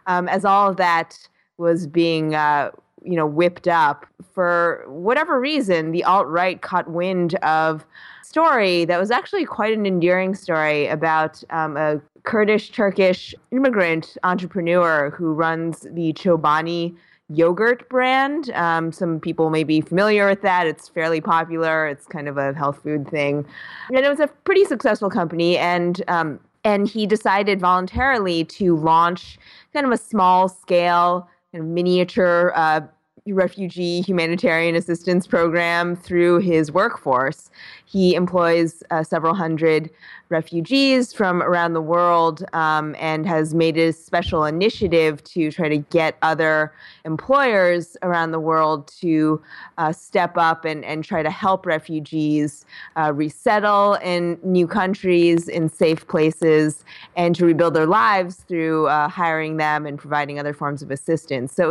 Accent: American